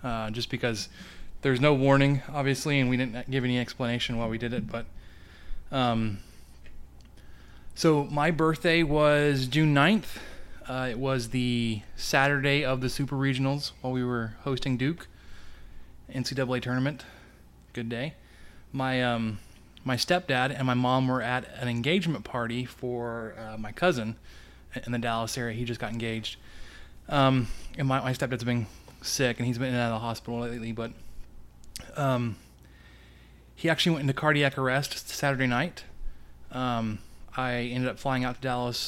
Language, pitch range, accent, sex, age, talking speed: English, 110-135 Hz, American, male, 20-39, 155 wpm